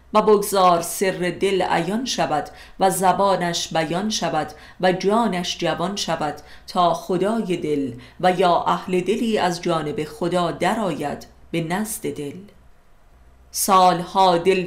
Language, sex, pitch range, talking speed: Persian, female, 145-190 Hz, 125 wpm